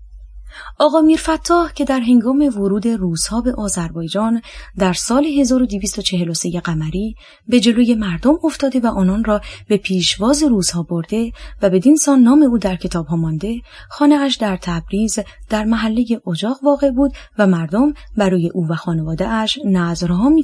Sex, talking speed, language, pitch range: female, 150 wpm, Persian, 175-250 Hz